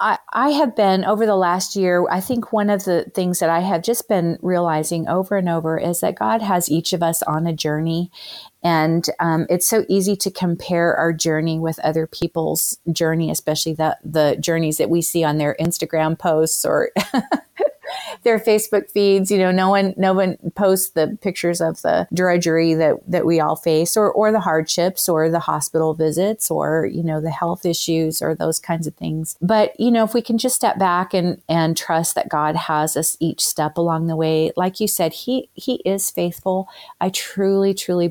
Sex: female